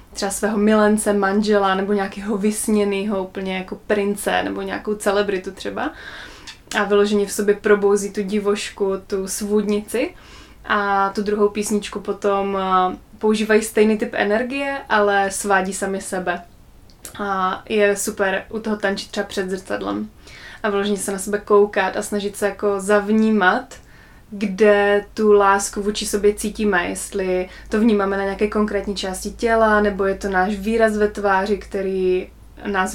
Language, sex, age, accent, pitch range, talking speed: Czech, female, 20-39, native, 195-210 Hz, 145 wpm